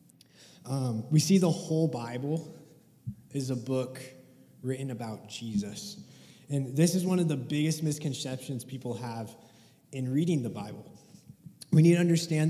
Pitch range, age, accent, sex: 125-155 Hz, 20-39, American, male